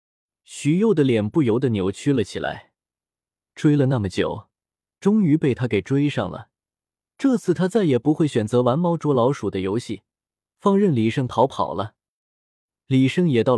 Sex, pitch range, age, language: male, 110-165 Hz, 20-39, Chinese